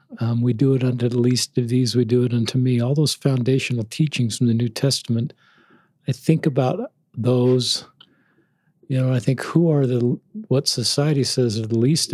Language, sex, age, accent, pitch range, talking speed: English, male, 50-69, American, 115-135 Hz, 195 wpm